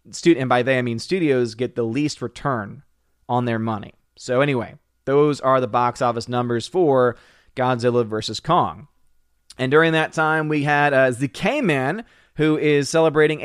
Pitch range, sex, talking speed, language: 120-165 Hz, male, 160 wpm, English